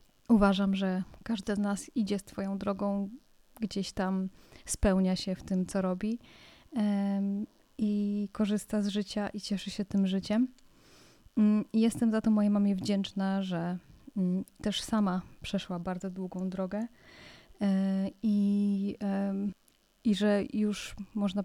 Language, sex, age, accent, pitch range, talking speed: Polish, female, 20-39, native, 190-210 Hz, 140 wpm